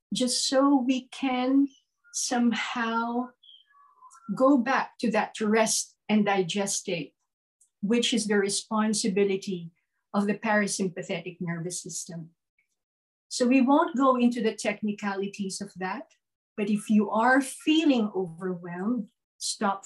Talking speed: 120 wpm